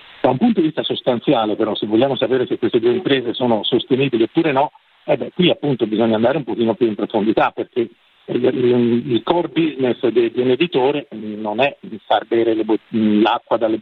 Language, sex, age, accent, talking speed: Italian, male, 50-69, native, 185 wpm